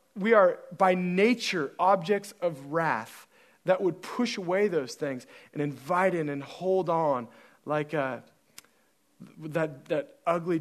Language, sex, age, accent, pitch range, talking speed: English, male, 30-49, American, 165-255 Hz, 135 wpm